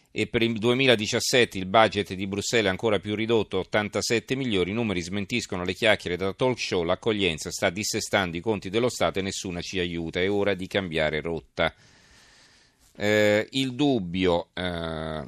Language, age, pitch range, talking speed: Italian, 40-59, 90-110 Hz, 165 wpm